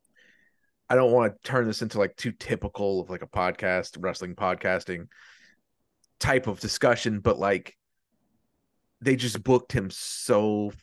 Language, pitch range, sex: English, 100-125 Hz, male